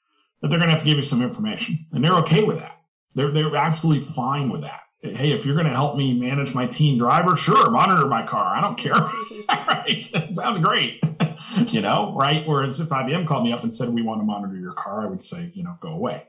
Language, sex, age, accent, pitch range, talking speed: English, male, 40-59, American, 120-170 Hz, 245 wpm